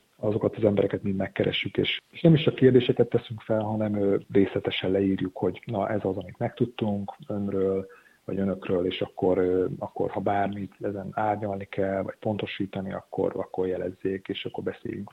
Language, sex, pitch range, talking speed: Hungarian, male, 100-120 Hz, 160 wpm